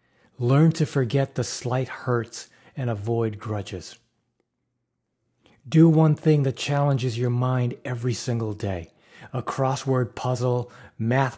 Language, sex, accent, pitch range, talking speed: English, male, American, 115-135 Hz, 120 wpm